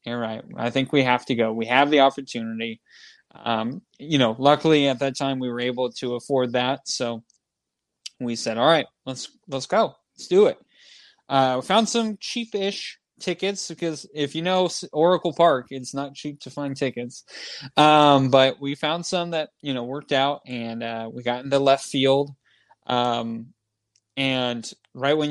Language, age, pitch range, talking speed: English, 20-39, 120-145 Hz, 185 wpm